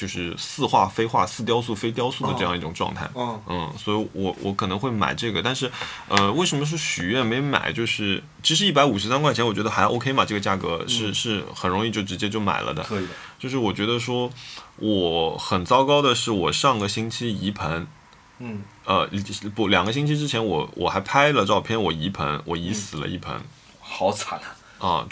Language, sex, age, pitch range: Chinese, male, 20-39, 90-115 Hz